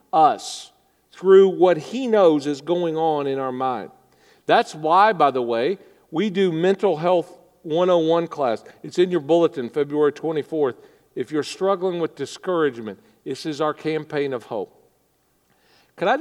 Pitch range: 170-220 Hz